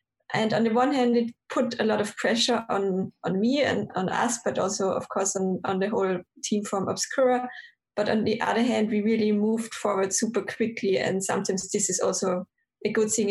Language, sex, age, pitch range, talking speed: English, female, 20-39, 200-235 Hz, 210 wpm